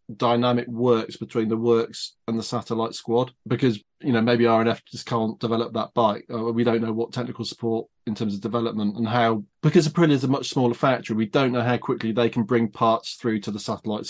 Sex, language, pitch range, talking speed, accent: male, English, 115-125 Hz, 220 wpm, British